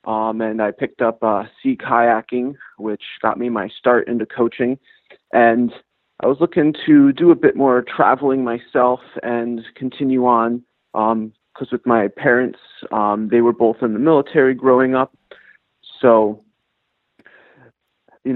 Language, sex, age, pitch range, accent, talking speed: English, male, 30-49, 115-125 Hz, American, 145 wpm